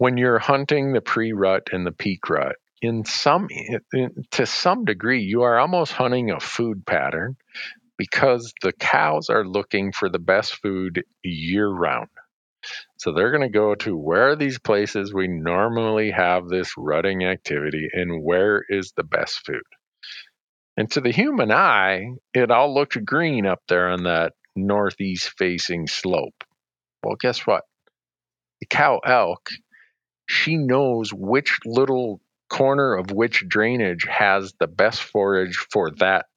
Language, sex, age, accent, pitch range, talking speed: English, male, 50-69, American, 90-125 Hz, 150 wpm